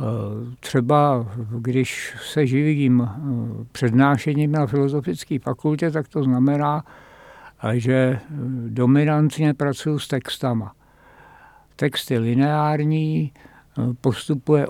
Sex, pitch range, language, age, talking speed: male, 125-145 Hz, Czech, 60-79, 80 wpm